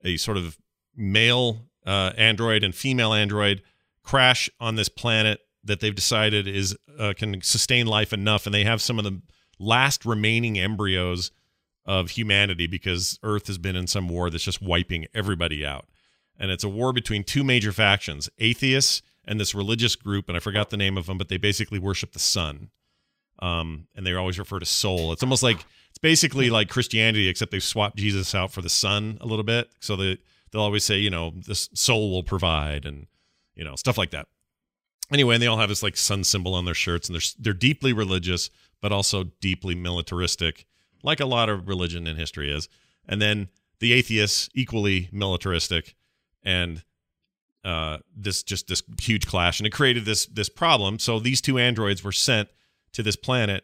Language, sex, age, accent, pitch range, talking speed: English, male, 40-59, American, 90-110 Hz, 190 wpm